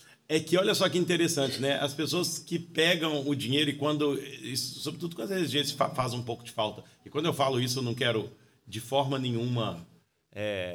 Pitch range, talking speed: 115-160 Hz, 200 wpm